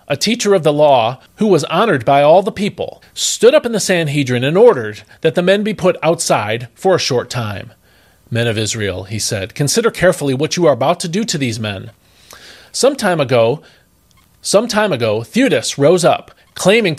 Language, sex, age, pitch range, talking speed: English, male, 40-59, 120-195 Hz, 195 wpm